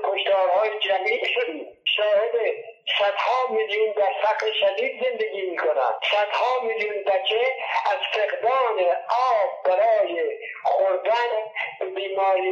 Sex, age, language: male, 50-69, Arabic